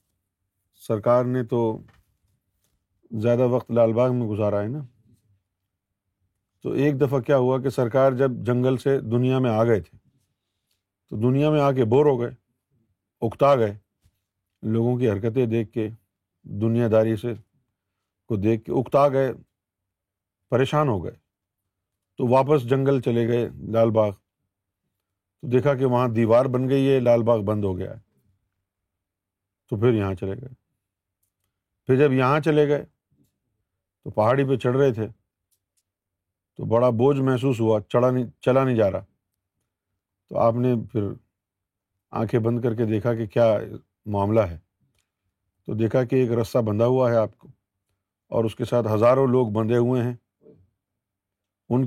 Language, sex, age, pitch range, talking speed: Urdu, male, 50-69, 100-125 Hz, 150 wpm